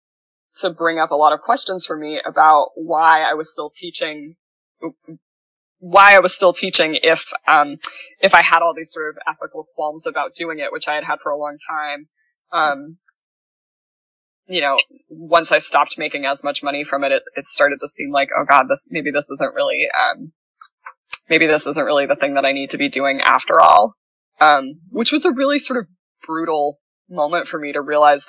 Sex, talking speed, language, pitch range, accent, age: female, 200 wpm, English, 145-185 Hz, American, 20-39